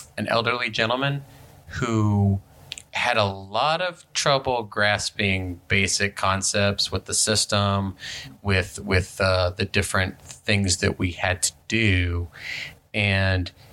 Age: 30-49